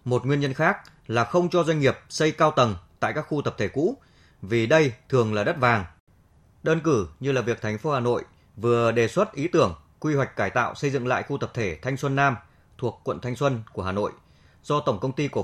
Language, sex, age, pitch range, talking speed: Vietnamese, male, 20-39, 110-145 Hz, 245 wpm